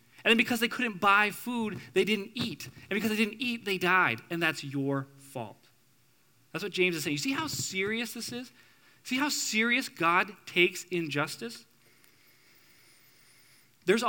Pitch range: 145-210 Hz